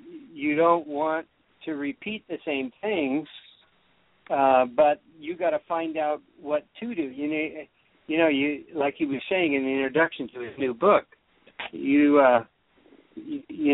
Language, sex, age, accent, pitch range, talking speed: English, male, 50-69, American, 135-165 Hz, 160 wpm